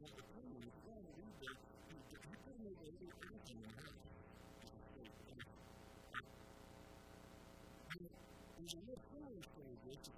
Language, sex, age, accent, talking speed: English, male, 50-69, American, 90 wpm